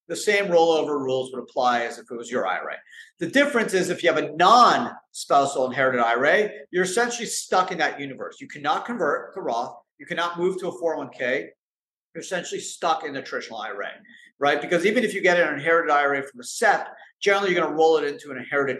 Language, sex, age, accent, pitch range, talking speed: English, male, 50-69, American, 130-190 Hz, 215 wpm